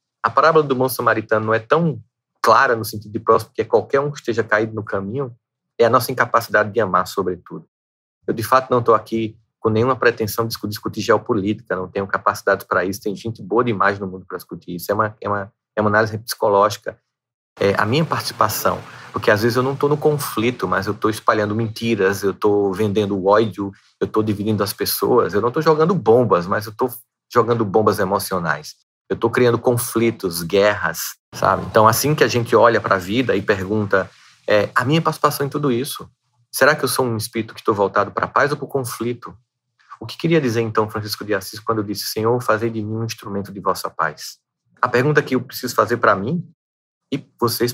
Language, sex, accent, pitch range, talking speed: Portuguese, male, Brazilian, 105-125 Hz, 215 wpm